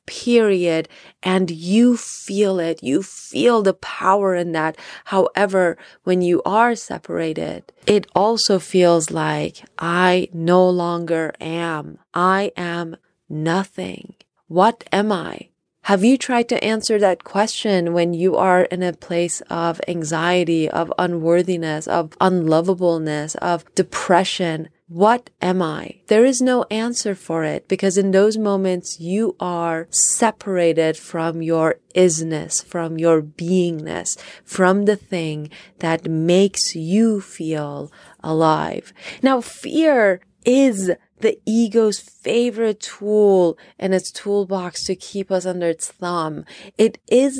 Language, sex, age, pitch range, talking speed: English, female, 30-49, 170-220 Hz, 125 wpm